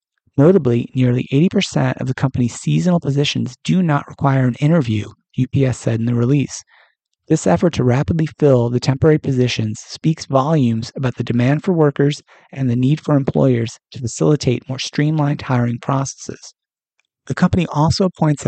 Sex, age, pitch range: male, 30-49, 120-150 Hz